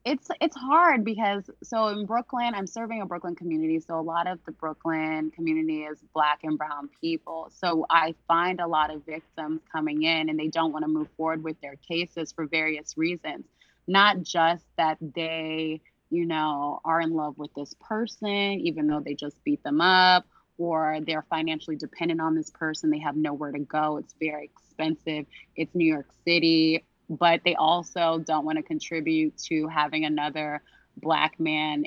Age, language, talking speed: 20-39, English, 180 wpm